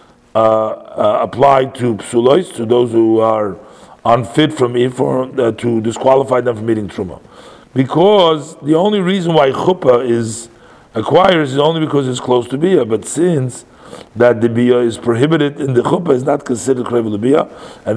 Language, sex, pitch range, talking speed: English, male, 115-140 Hz, 165 wpm